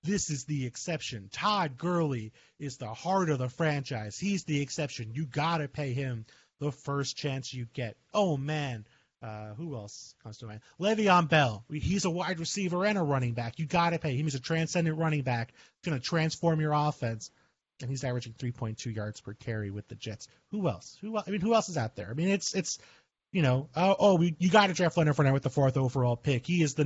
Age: 30-49